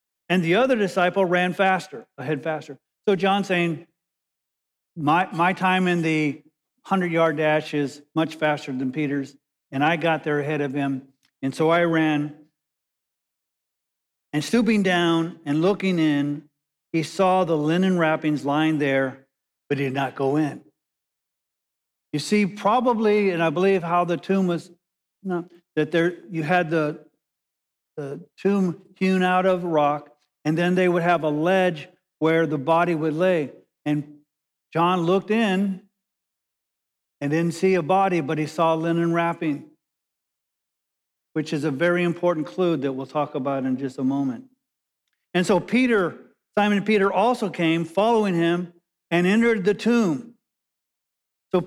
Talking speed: 150 wpm